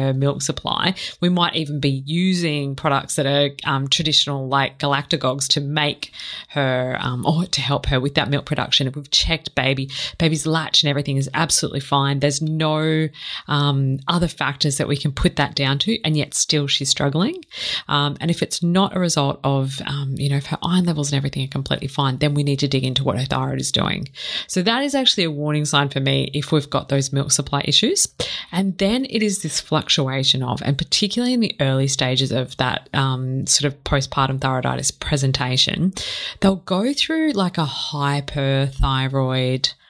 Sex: female